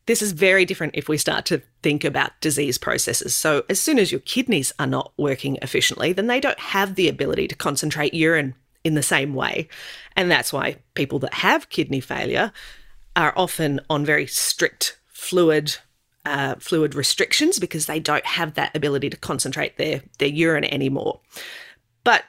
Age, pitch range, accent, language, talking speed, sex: 30-49, 145-185 Hz, Australian, English, 175 wpm, female